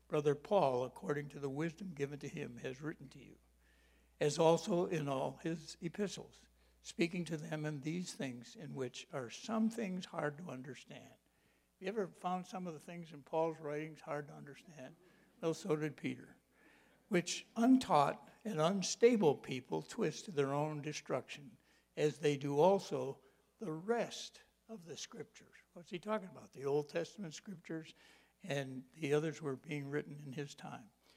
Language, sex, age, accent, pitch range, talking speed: English, male, 60-79, American, 140-185 Hz, 170 wpm